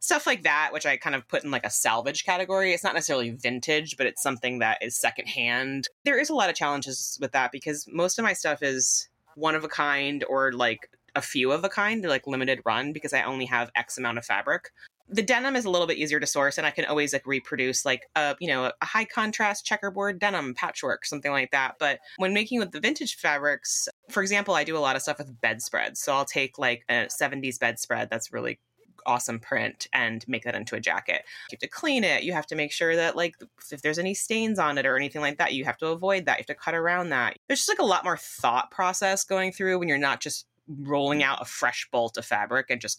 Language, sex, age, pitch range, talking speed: English, female, 20-39, 130-190 Hz, 245 wpm